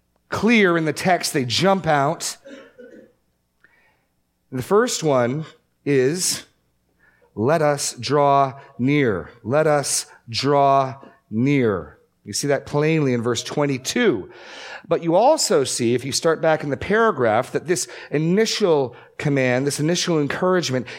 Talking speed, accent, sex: 125 wpm, American, male